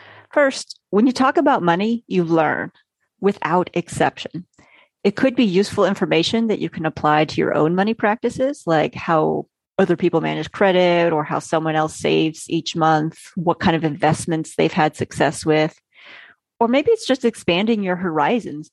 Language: English